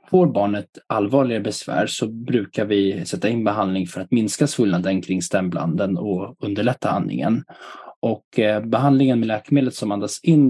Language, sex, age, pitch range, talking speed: Swedish, male, 20-39, 100-125 Hz, 155 wpm